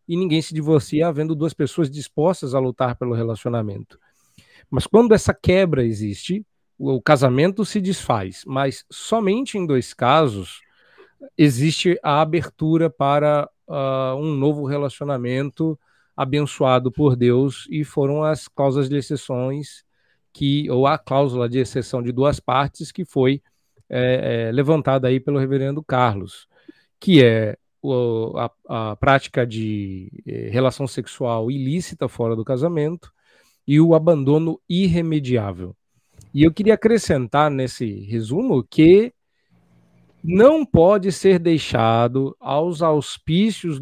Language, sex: Portuguese, male